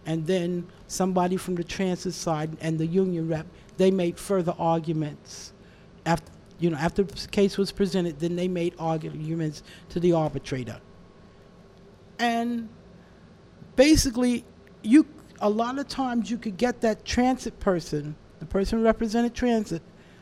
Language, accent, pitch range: English, American, 165-210 Hz